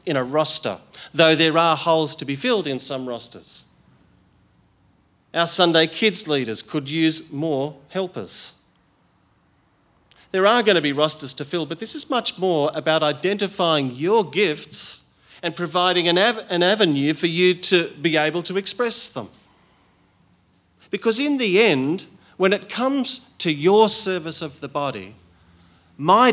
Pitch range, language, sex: 120-185 Hz, English, male